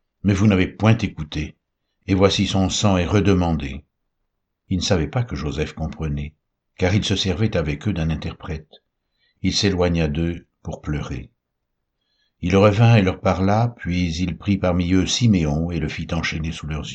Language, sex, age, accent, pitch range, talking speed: French, male, 60-79, French, 80-105 Hz, 175 wpm